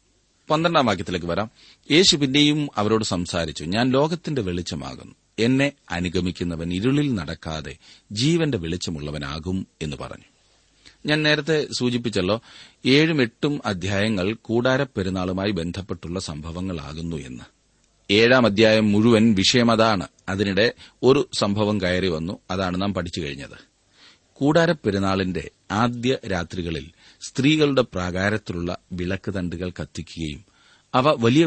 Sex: male